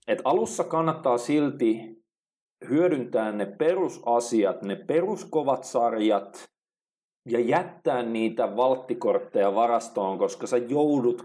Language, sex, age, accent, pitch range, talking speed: Finnish, male, 40-59, native, 100-145 Hz, 95 wpm